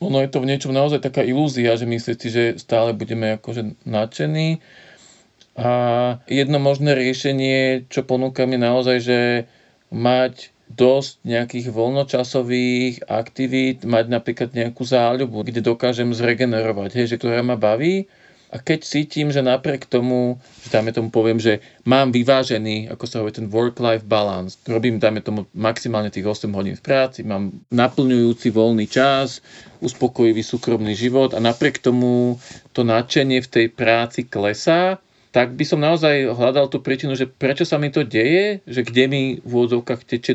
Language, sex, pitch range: Slovak, male, 115-135 Hz